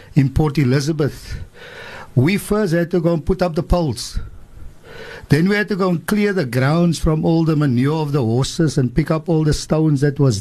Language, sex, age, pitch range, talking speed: English, male, 60-79, 135-170 Hz, 215 wpm